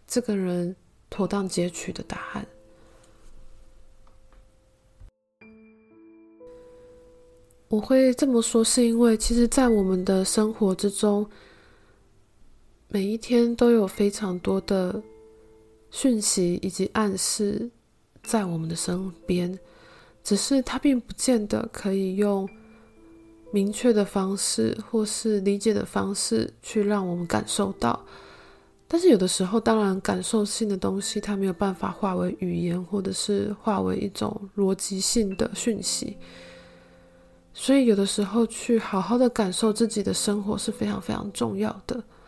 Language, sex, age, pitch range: Chinese, female, 20-39, 175-220 Hz